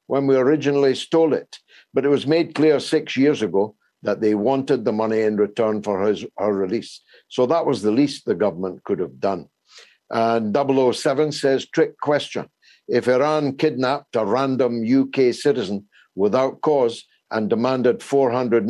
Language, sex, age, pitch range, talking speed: English, male, 60-79, 125-180 Hz, 160 wpm